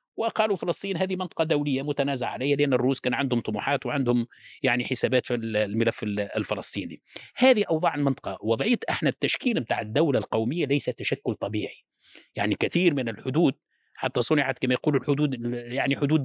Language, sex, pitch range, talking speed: Arabic, male, 120-160 Hz, 150 wpm